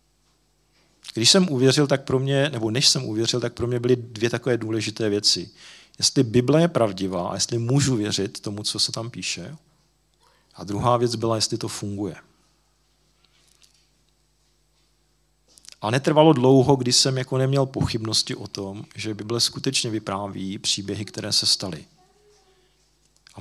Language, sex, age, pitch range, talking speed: Czech, male, 40-59, 110-140 Hz, 145 wpm